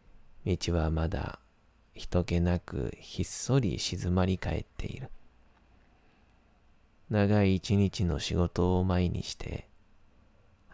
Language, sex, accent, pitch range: Japanese, male, native, 85-100 Hz